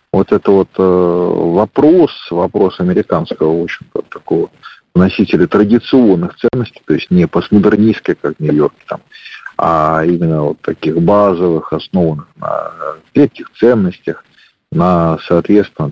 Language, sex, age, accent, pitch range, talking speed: Russian, male, 50-69, native, 95-160 Hz, 125 wpm